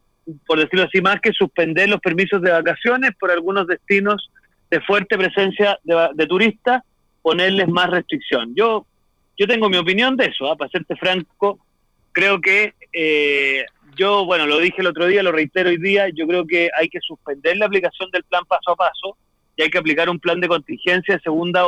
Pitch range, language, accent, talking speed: 165-200 Hz, Spanish, Argentinian, 195 wpm